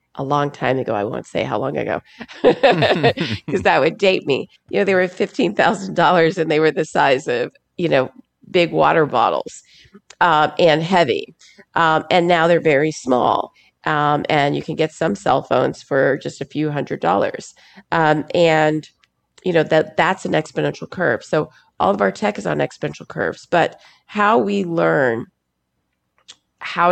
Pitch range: 145-180 Hz